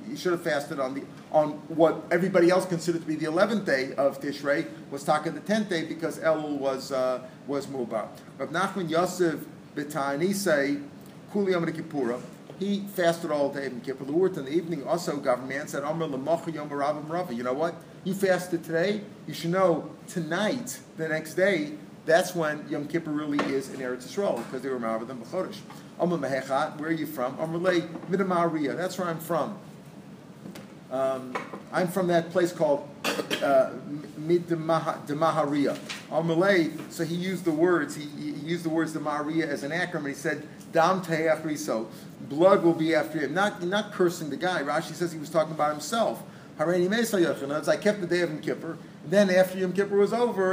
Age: 40-59